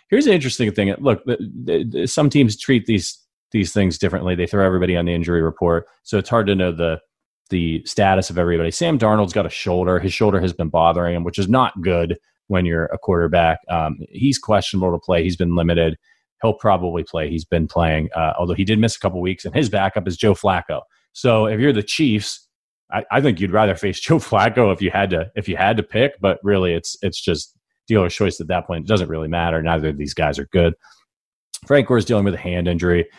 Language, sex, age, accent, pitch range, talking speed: English, male, 30-49, American, 85-110 Hz, 235 wpm